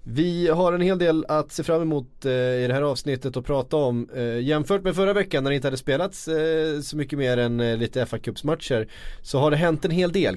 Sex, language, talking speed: male, Swedish, 225 wpm